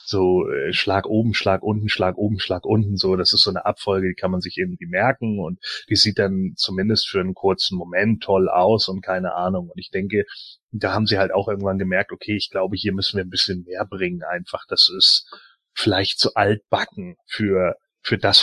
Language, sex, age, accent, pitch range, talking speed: German, male, 30-49, German, 95-110 Hz, 210 wpm